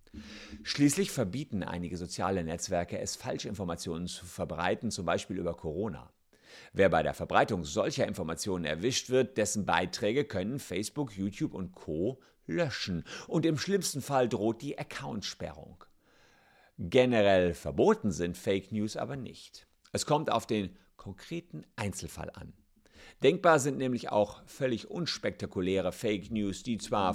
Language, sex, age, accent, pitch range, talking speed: German, male, 50-69, German, 90-135 Hz, 135 wpm